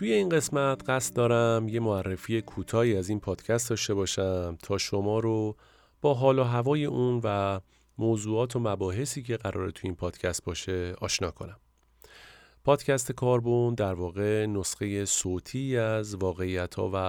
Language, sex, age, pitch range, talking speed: Persian, male, 40-59, 95-120 Hz, 150 wpm